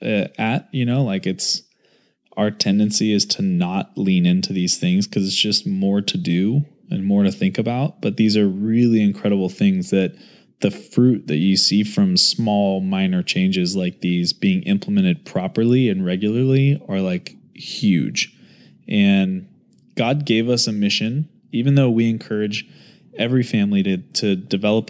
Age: 20-39